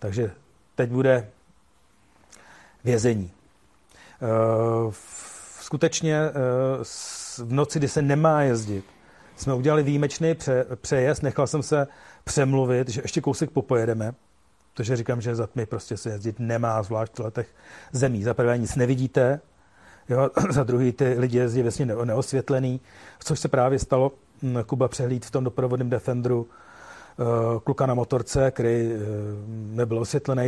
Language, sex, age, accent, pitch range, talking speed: Czech, male, 40-59, native, 115-135 Hz, 135 wpm